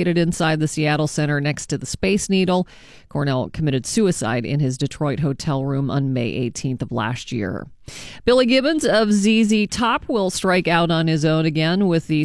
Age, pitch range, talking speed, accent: 40-59, 150-185 Hz, 180 wpm, American